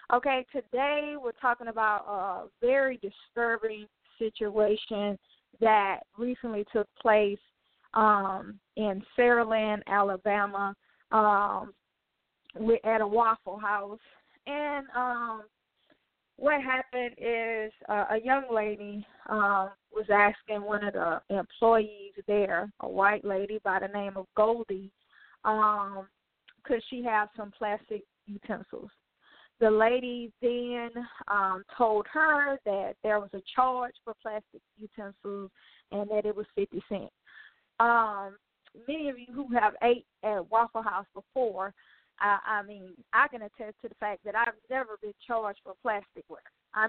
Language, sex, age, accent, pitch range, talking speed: English, female, 10-29, American, 205-250 Hz, 135 wpm